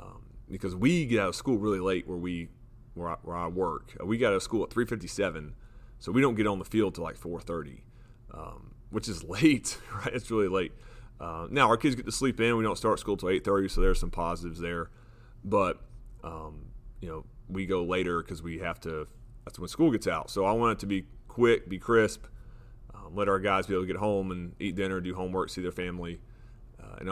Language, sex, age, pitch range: English, male, 30-49, 90-115 Hz